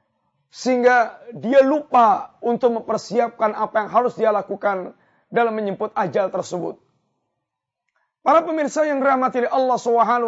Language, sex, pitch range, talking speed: Malay, male, 230-270 Hz, 130 wpm